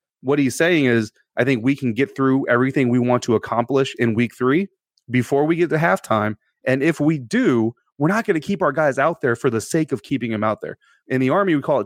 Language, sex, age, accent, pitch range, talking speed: English, male, 30-49, American, 115-145 Hz, 255 wpm